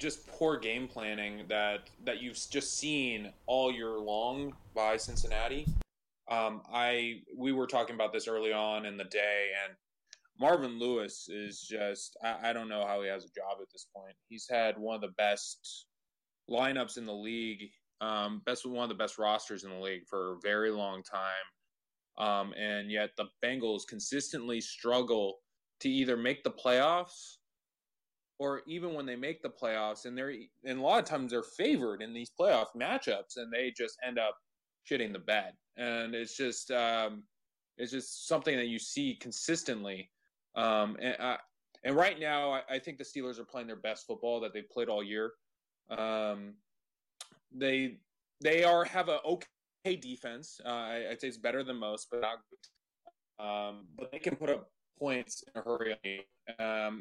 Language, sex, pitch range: English, male, 105-130 Hz